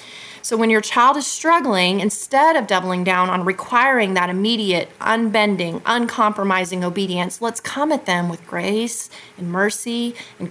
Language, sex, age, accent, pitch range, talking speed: English, female, 30-49, American, 190-240 Hz, 150 wpm